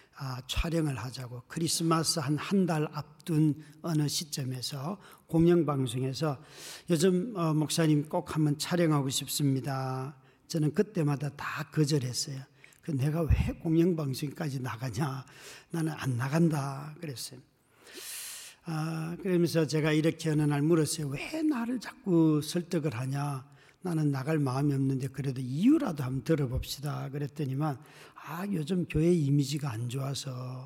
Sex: male